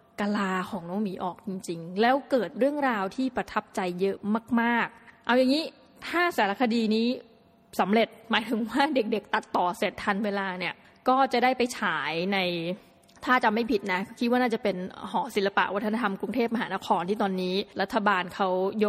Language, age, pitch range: Thai, 20-39, 195-235 Hz